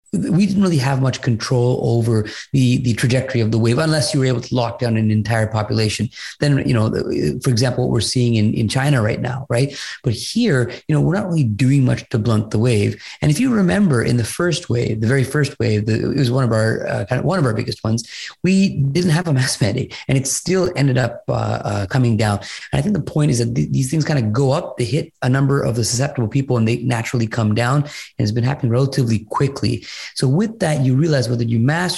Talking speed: 250 wpm